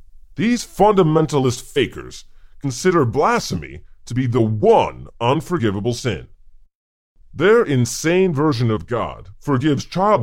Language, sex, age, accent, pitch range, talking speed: English, female, 40-59, American, 90-155 Hz, 105 wpm